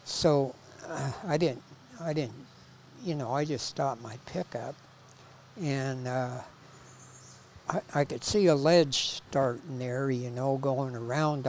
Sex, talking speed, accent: male, 140 wpm, American